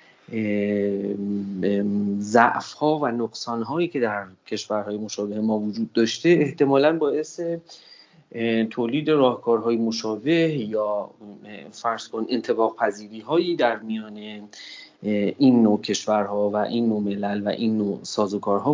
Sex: male